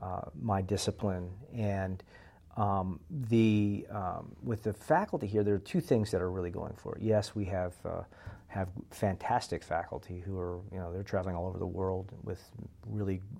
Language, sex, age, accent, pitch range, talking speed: English, male, 40-59, American, 95-105 Hz, 180 wpm